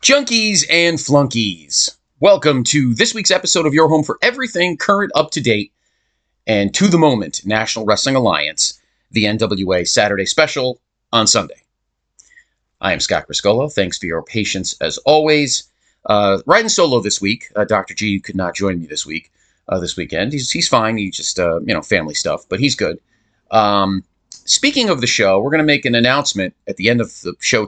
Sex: male